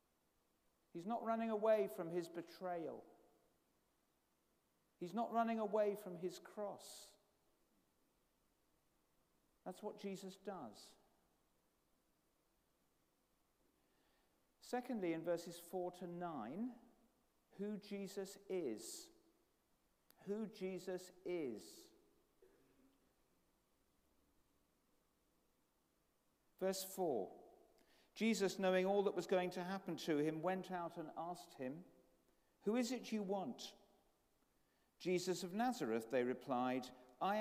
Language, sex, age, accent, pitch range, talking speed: English, male, 50-69, British, 170-215 Hz, 95 wpm